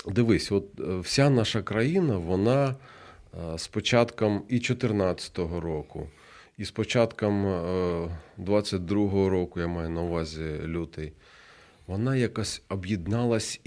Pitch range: 90-125 Hz